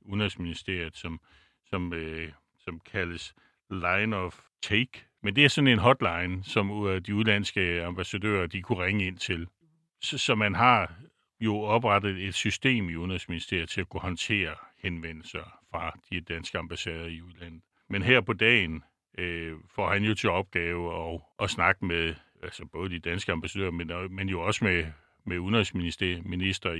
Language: Danish